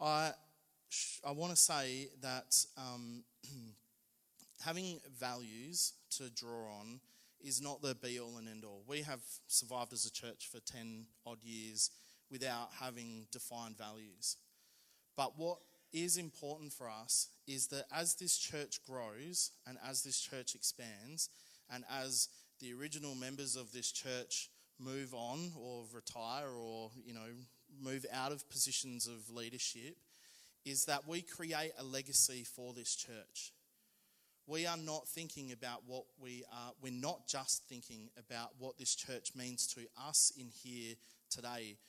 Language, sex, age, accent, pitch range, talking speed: English, male, 20-39, Australian, 120-145 Hz, 150 wpm